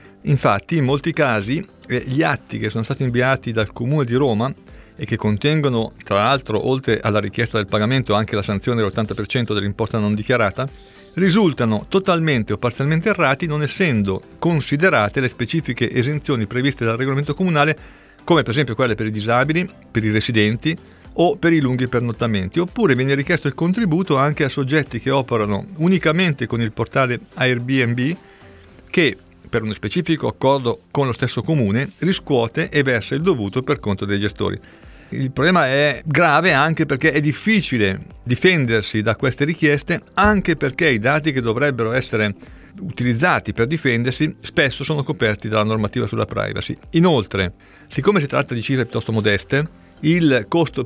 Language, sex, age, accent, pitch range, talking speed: Italian, male, 40-59, native, 110-150 Hz, 160 wpm